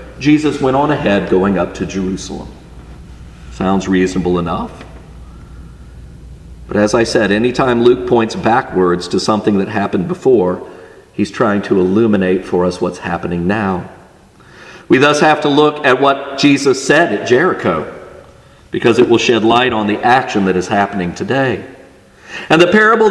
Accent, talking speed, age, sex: American, 155 wpm, 50-69, male